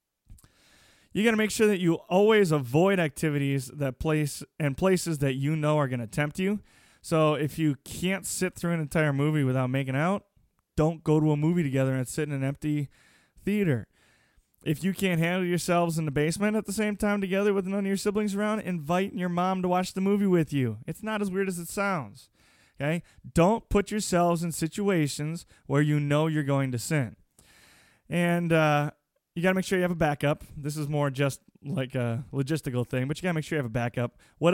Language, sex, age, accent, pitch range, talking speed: English, male, 20-39, American, 140-175 Hz, 215 wpm